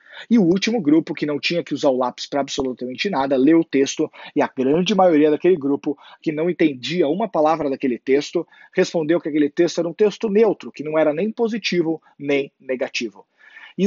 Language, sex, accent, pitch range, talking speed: Portuguese, male, Brazilian, 145-195 Hz, 200 wpm